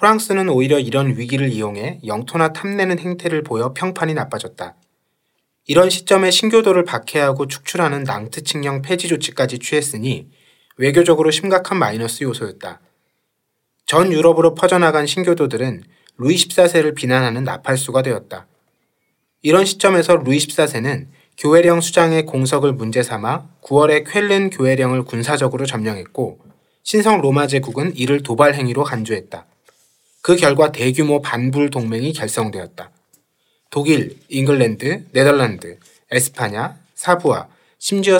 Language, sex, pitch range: Korean, male, 130-170 Hz